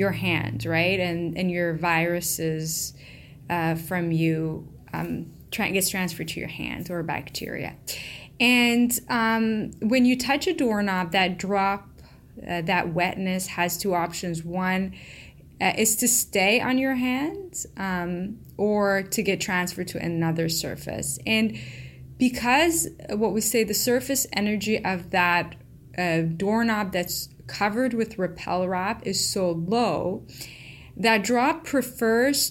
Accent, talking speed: American, 135 wpm